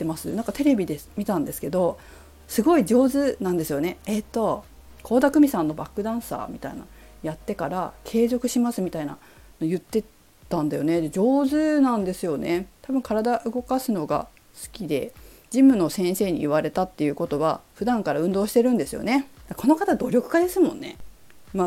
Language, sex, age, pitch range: Japanese, female, 40-59, 165-265 Hz